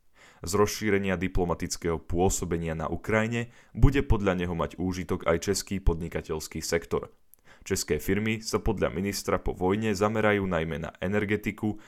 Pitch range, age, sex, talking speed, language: 85-110 Hz, 10-29, male, 130 wpm, Slovak